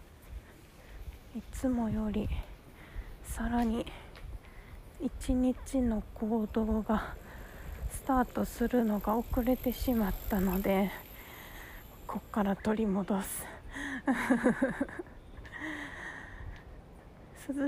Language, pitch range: Japanese, 205-250 Hz